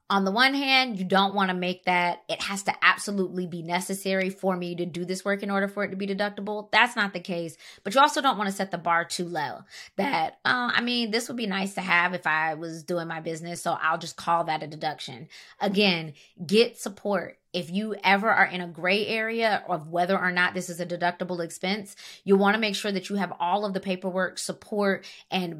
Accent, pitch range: American, 180-210 Hz